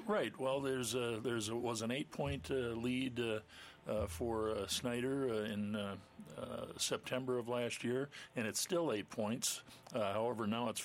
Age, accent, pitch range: 50-69, American, 100-115 Hz